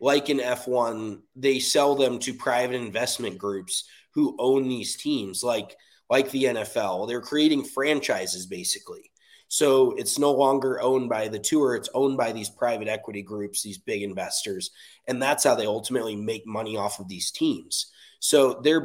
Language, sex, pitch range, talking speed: English, male, 110-145 Hz, 170 wpm